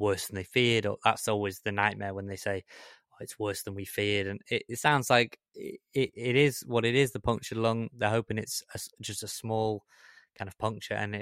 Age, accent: 20-39, British